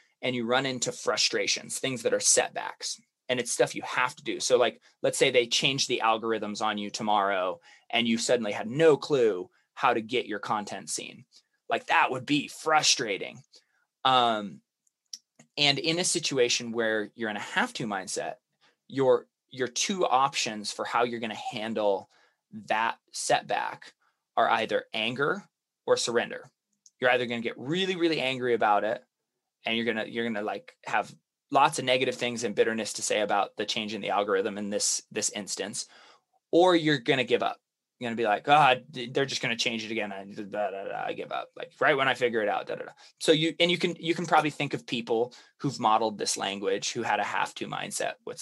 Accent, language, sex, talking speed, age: American, English, male, 210 wpm, 20-39